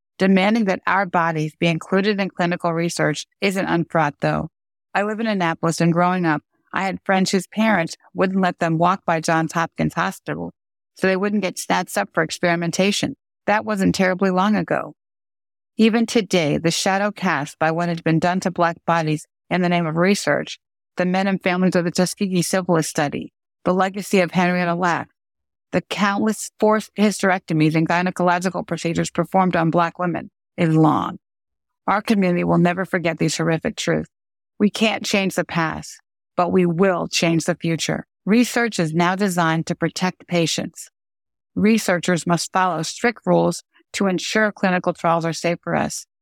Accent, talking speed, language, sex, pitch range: American, 165 wpm, English, female, 170-195 Hz